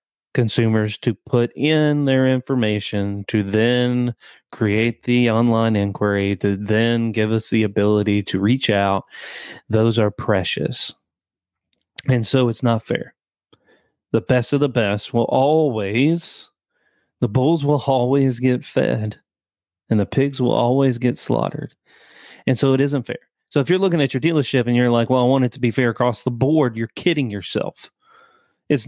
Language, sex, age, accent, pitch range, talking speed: English, male, 30-49, American, 110-140 Hz, 160 wpm